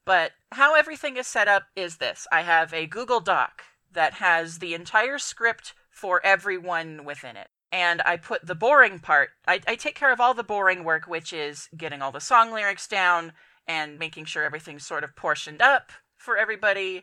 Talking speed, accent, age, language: 195 wpm, American, 30-49, English